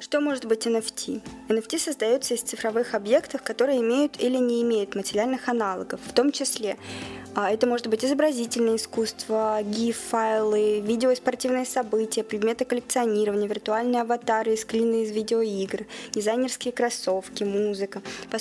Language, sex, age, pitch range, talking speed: Russian, female, 20-39, 220-255 Hz, 125 wpm